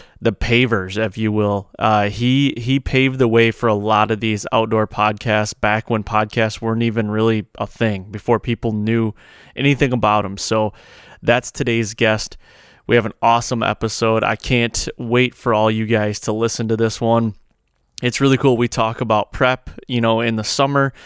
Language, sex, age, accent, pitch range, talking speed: English, male, 20-39, American, 110-120 Hz, 185 wpm